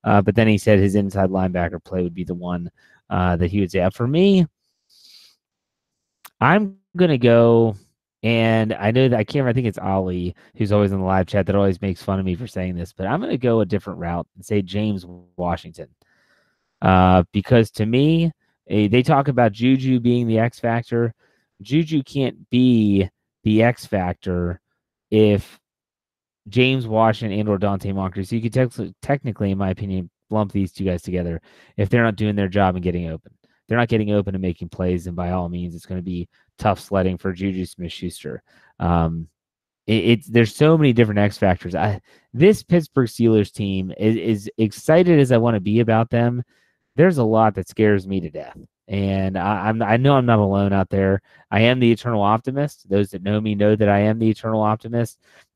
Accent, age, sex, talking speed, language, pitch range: American, 30-49, male, 205 wpm, English, 95-115 Hz